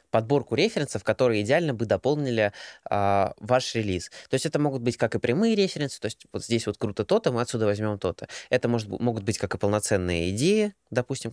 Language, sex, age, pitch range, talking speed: Russian, male, 20-39, 105-145 Hz, 200 wpm